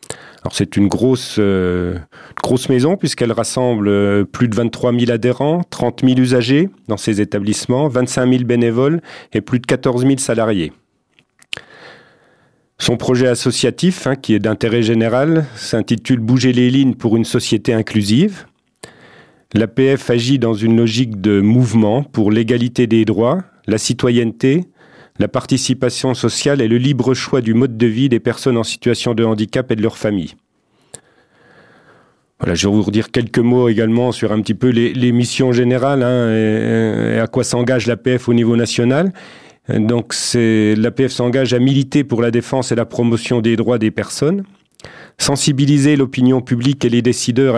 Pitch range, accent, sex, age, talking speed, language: 115-130 Hz, French, male, 40-59, 155 wpm, French